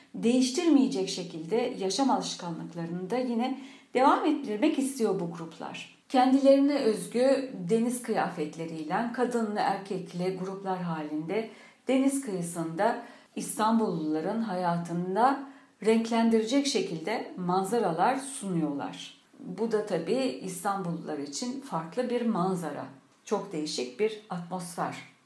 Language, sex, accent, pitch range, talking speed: Turkish, female, native, 180-250 Hz, 90 wpm